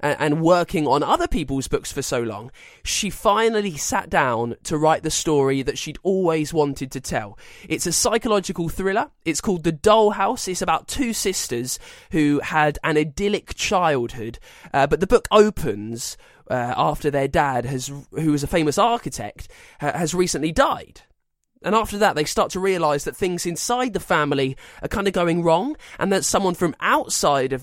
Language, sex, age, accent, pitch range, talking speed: English, male, 20-39, British, 145-195 Hz, 180 wpm